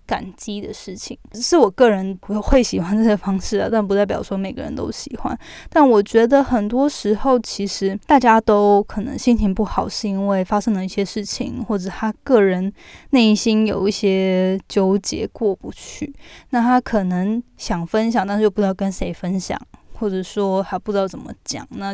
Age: 10-29